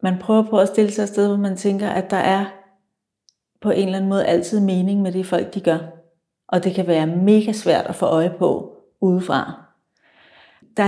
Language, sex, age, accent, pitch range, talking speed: Danish, female, 40-59, native, 175-205 Hz, 210 wpm